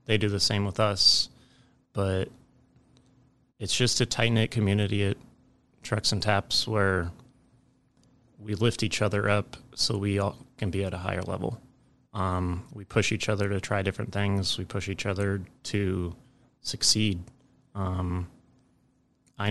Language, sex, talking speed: English, male, 150 wpm